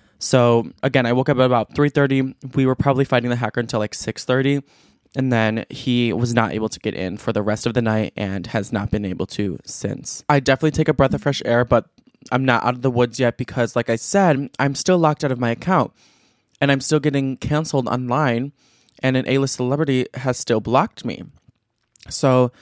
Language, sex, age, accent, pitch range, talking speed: English, male, 20-39, American, 120-140 Hz, 215 wpm